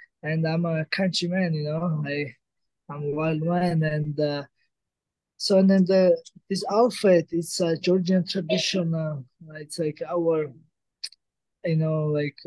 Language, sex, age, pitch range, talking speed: English, male, 20-39, 155-185 Hz, 145 wpm